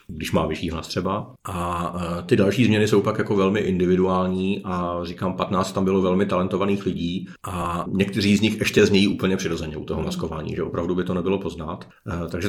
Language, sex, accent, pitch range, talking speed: Czech, male, native, 85-95 Hz, 190 wpm